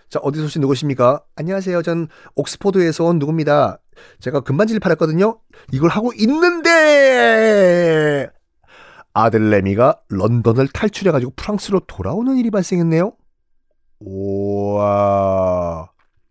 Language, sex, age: Korean, male, 40-59